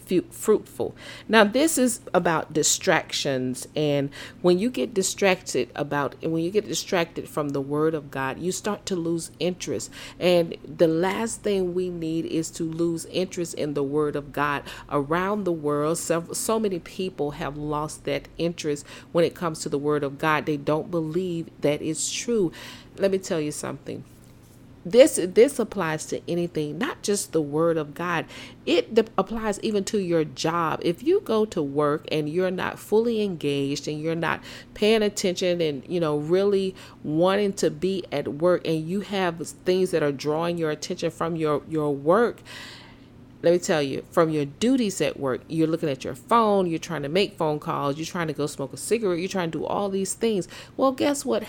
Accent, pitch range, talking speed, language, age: American, 150-190 Hz, 190 wpm, English, 40-59